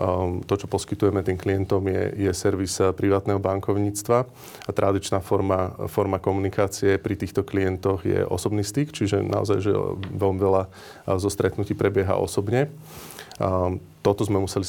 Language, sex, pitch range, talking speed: Slovak, male, 95-100 Hz, 135 wpm